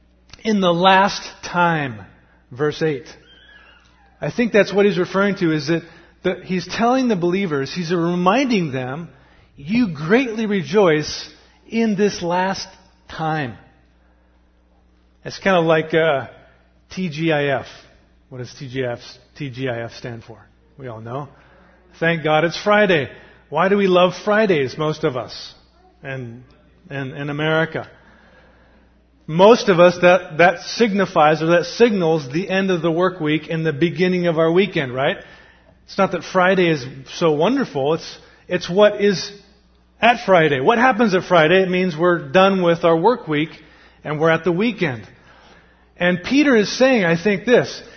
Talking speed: 150 wpm